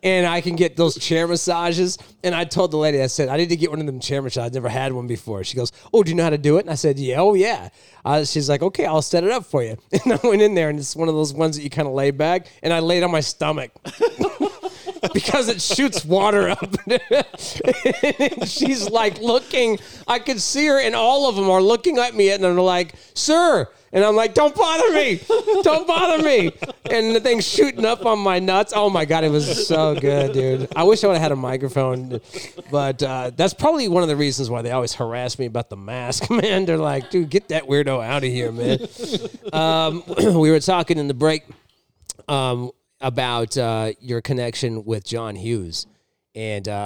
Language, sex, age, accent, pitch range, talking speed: English, male, 30-49, American, 115-185 Hz, 230 wpm